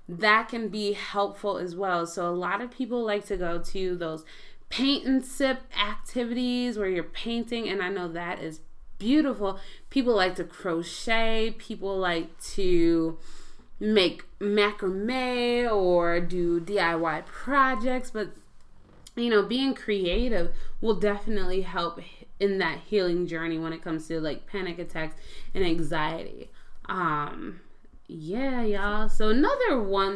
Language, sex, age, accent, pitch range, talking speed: English, female, 20-39, American, 175-235 Hz, 135 wpm